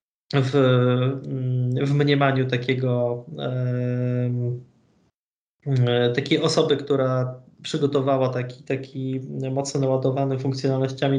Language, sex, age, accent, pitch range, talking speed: Polish, male, 20-39, native, 135-150 Hz, 80 wpm